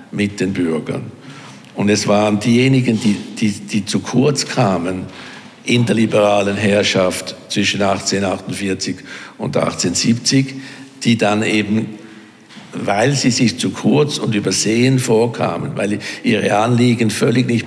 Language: German